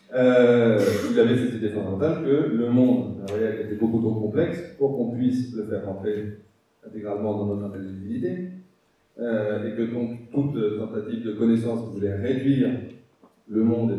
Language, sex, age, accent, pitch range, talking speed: French, male, 40-59, French, 105-125 Hz, 165 wpm